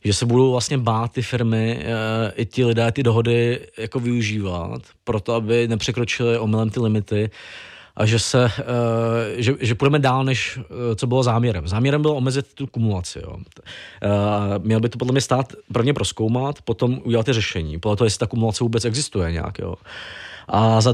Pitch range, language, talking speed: 105-125 Hz, Czech, 185 wpm